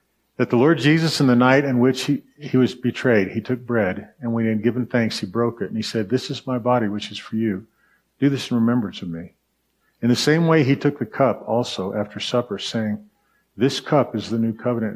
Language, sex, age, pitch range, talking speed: English, male, 50-69, 110-135 Hz, 240 wpm